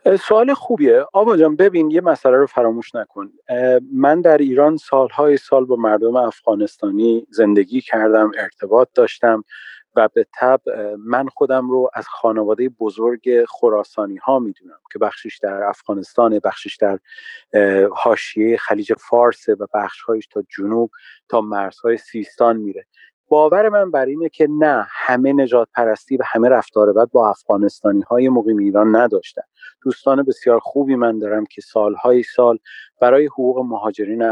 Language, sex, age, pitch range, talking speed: Persian, male, 40-59, 110-160 Hz, 140 wpm